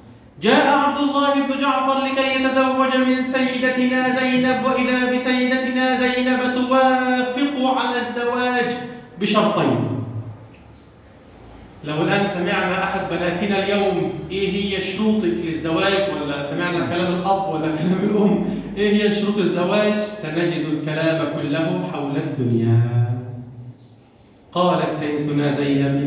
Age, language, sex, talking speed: 40-59, Arabic, male, 105 wpm